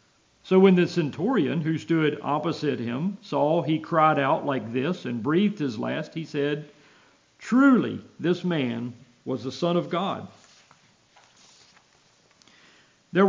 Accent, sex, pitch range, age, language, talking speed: American, male, 125-170 Hz, 50-69, English, 130 wpm